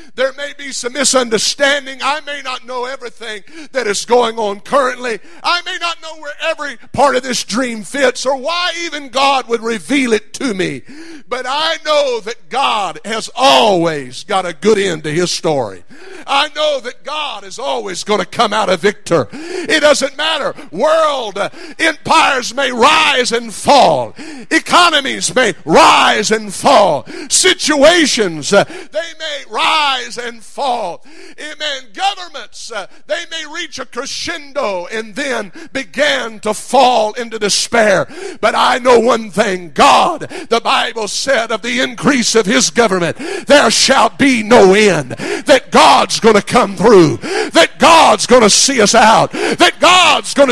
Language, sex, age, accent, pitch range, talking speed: English, male, 50-69, American, 225-305 Hz, 155 wpm